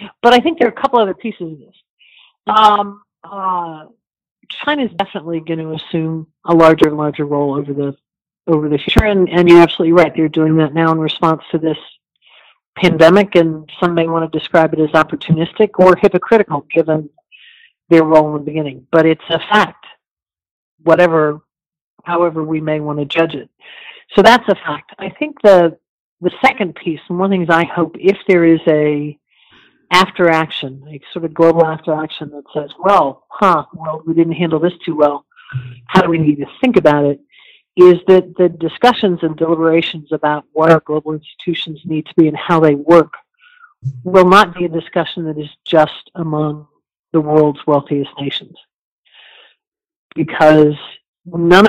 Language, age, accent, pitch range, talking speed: English, 50-69, American, 155-185 Hz, 175 wpm